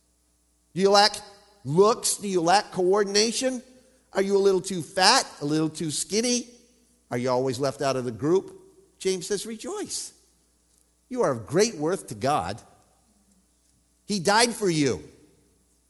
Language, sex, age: English, male, 50-69